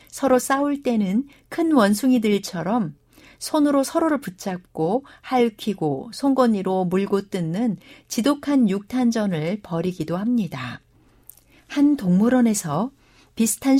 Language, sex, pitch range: Korean, female, 185-260 Hz